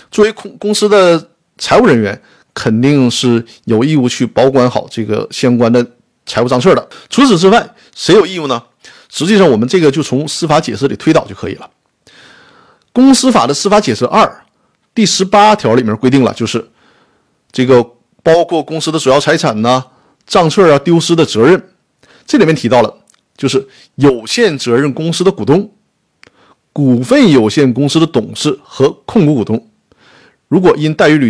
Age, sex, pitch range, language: 50-69, male, 125-195 Hz, Chinese